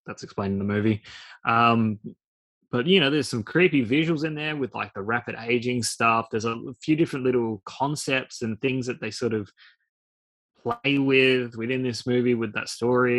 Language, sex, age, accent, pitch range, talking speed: English, male, 20-39, Australian, 110-130 Hz, 185 wpm